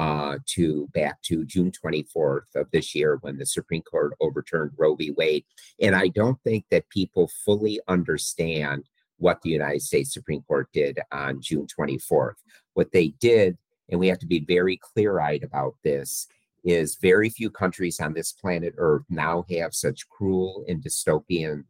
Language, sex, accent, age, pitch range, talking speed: English, male, American, 50-69, 80-110 Hz, 170 wpm